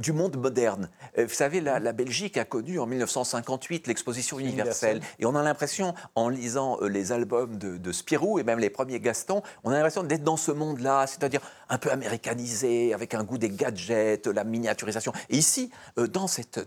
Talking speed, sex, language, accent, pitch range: 185 wpm, male, French, French, 115-165 Hz